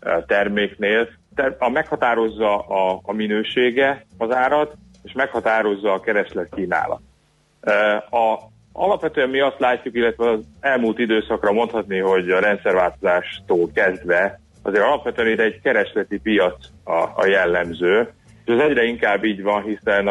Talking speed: 130 wpm